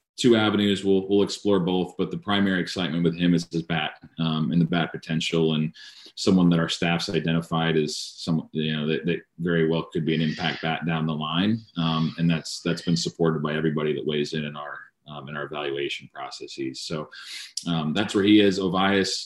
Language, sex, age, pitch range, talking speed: English, male, 30-49, 80-95 Hz, 210 wpm